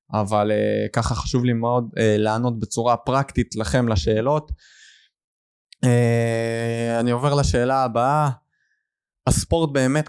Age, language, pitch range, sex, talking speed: 20-39, Hebrew, 115-150 Hz, male, 115 wpm